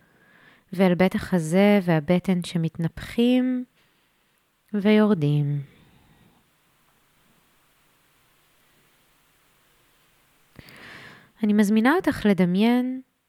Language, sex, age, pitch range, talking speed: Hebrew, female, 20-39, 180-235 Hz, 45 wpm